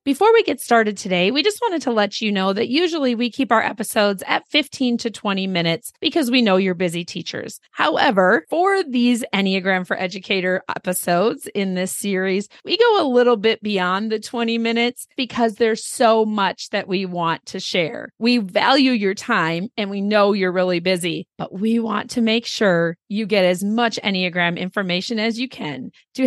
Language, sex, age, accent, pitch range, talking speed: English, female, 40-59, American, 190-245 Hz, 190 wpm